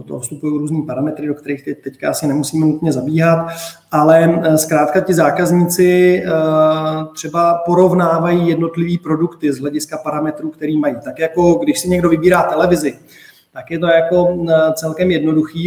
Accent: native